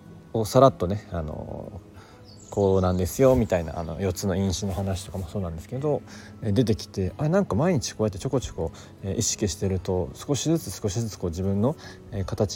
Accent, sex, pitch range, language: native, male, 90-110 Hz, Japanese